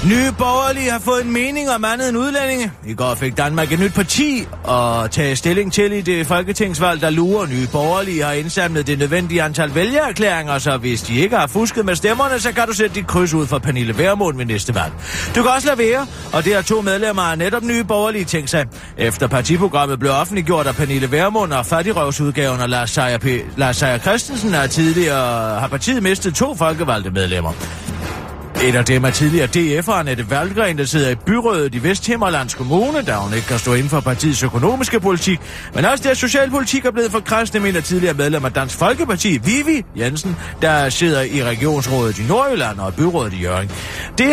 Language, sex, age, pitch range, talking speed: Danish, male, 30-49, 130-215 Hz, 200 wpm